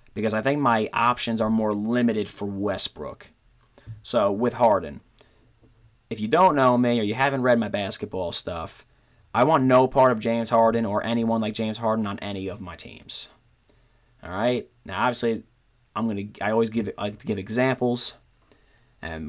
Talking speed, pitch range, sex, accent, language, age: 175 wpm, 105-120 Hz, male, American, English, 30-49